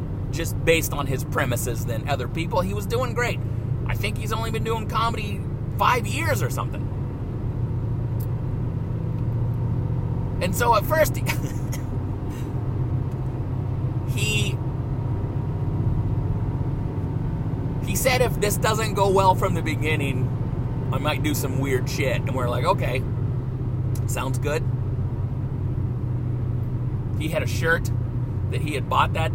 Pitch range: 115-130 Hz